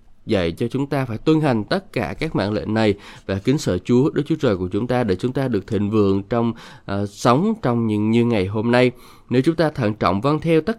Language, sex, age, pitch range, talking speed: Vietnamese, male, 20-39, 110-135 Hz, 255 wpm